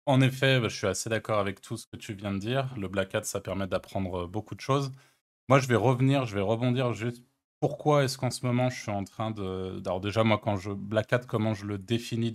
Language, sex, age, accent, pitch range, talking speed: French, male, 20-39, French, 100-125 Hz, 255 wpm